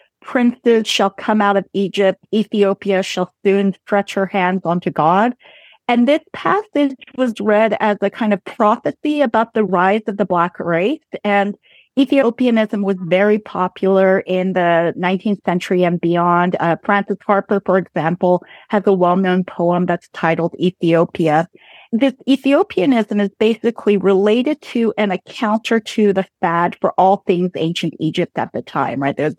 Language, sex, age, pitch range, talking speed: English, female, 40-59, 180-225 Hz, 155 wpm